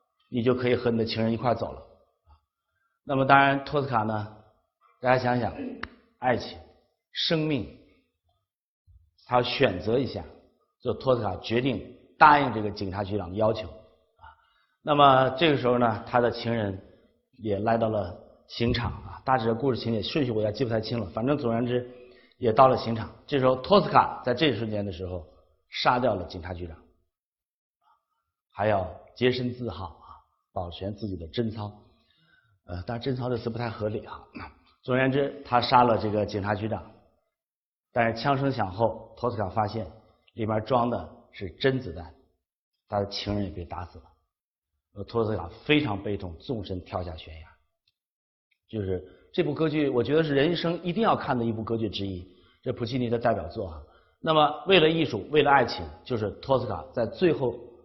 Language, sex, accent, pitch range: Chinese, male, native, 100-125 Hz